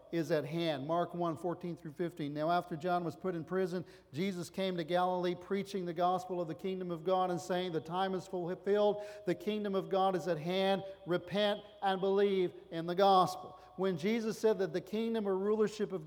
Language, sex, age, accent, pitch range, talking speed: English, male, 40-59, American, 185-210 Hz, 205 wpm